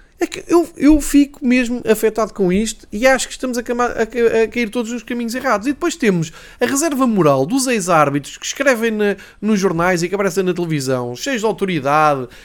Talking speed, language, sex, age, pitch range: 205 wpm, Portuguese, male, 20-39, 180-250 Hz